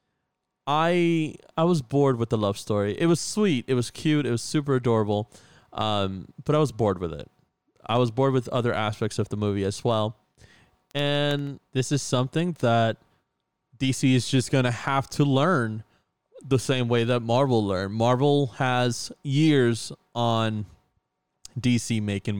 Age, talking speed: 20-39, 165 wpm